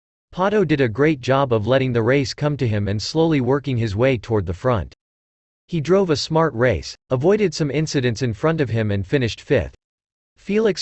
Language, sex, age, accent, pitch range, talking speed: French, male, 40-59, American, 115-150 Hz, 200 wpm